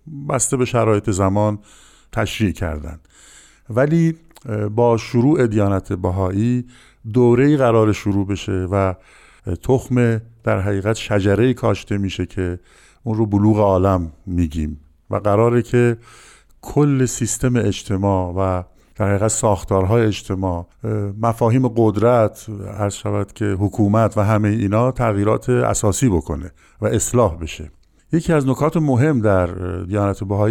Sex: male